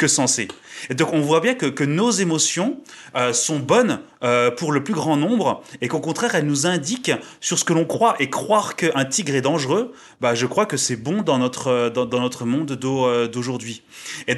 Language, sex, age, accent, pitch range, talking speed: French, male, 30-49, French, 130-175 Hz, 220 wpm